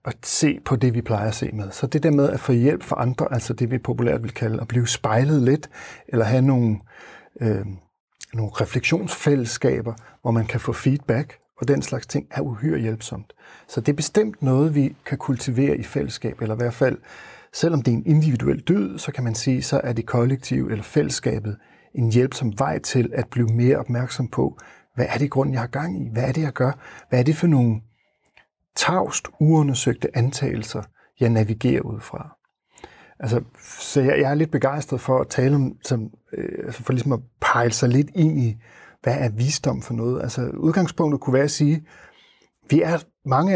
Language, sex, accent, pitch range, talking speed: Danish, male, native, 120-145 Hz, 200 wpm